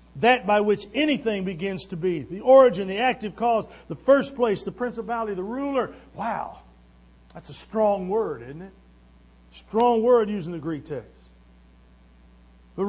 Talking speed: 155 wpm